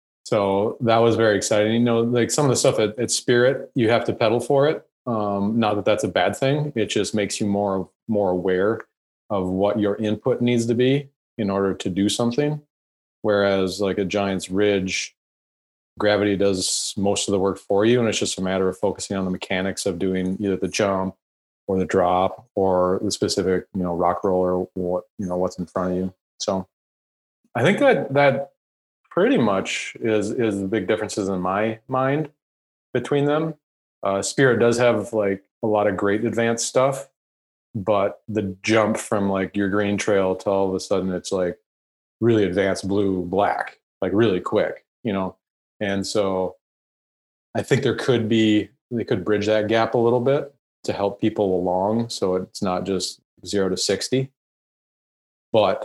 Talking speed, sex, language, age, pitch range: 185 wpm, male, English, 30-49, 95-115 Hz